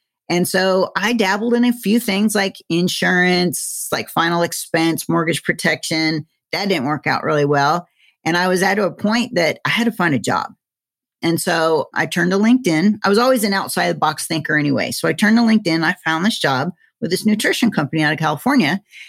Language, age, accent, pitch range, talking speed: English, 40-59, American, 160-205 Hz, 200 wpm